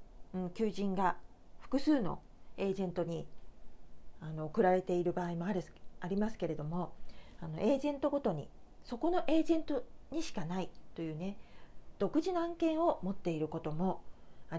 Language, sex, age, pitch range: Japanese, female, 40-59, 165-255 Hz